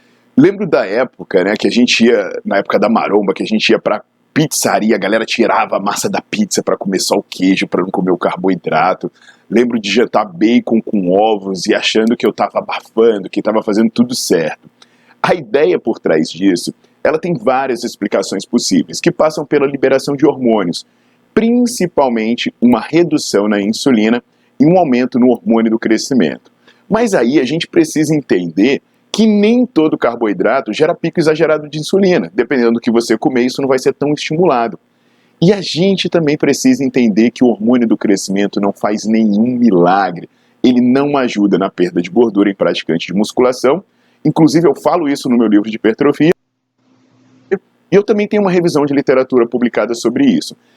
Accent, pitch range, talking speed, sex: Brazilian, 105-160 Hz, 180 wpm, male